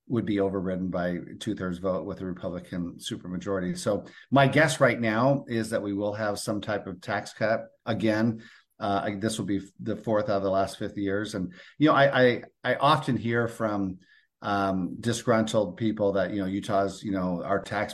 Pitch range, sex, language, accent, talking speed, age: 95-115 Hz, male, English, American, 195 wpm, 40-59